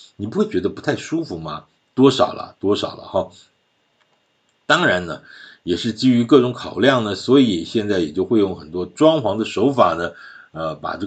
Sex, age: male, 50-69